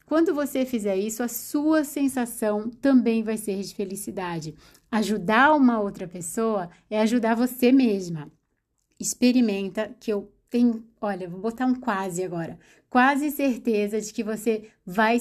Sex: female